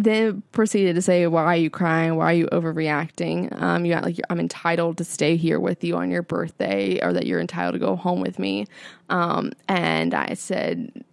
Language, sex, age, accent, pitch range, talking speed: English, female, 20-39, American, 175-240 Hz, 215 wpm